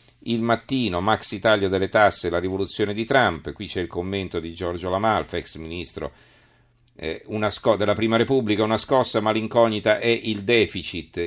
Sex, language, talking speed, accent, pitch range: male, Italian, 150 wpm, native, 85-110 Hz